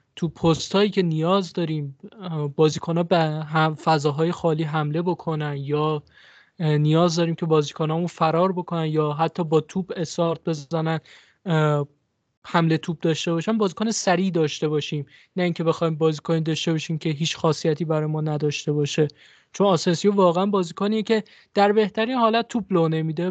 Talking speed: 150 wpm